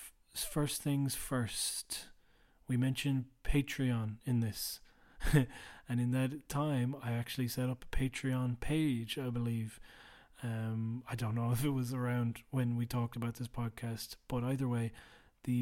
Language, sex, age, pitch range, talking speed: English, male, 30-49, 120-135 Hz, 150 wpm